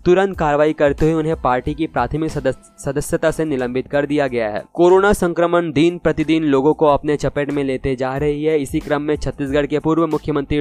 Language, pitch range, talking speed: Hindi, 140-160 Hz, 200 wpm